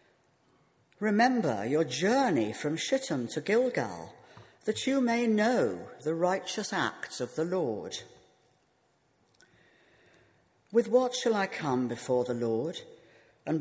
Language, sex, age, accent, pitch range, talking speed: English, female, 60-79, British, 130-215 Hz, 115 wpm